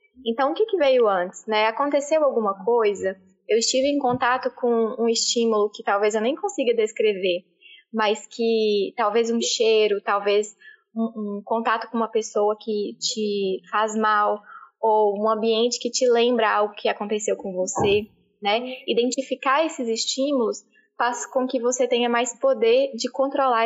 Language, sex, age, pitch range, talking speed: Portuguese, female, 10-29, 215-265 Hz, 155 wpm